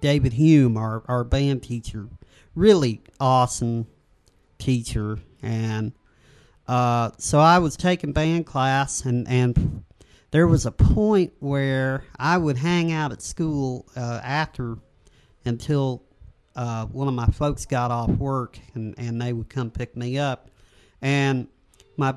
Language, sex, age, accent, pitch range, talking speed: English, male, 40-59, American, 115-145 Hz, 140 wpm